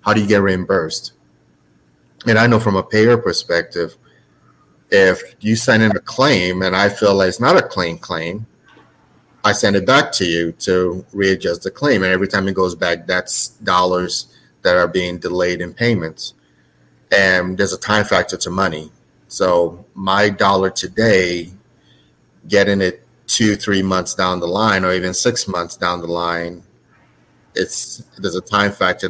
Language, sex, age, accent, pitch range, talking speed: English, male, 30-49, American, 85-100 Hz, 170 wpm